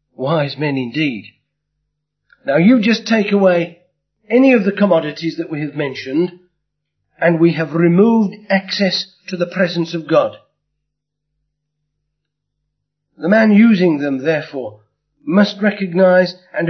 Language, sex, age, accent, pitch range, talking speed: English, male, 50-69, British, 145-185 Hz, 120 wpm